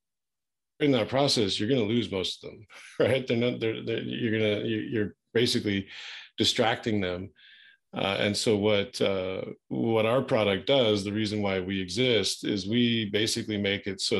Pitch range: 100-120 Hz